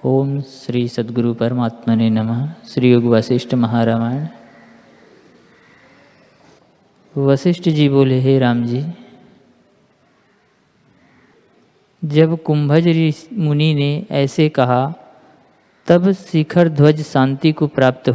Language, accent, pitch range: Hindi, native, 135-175 Hz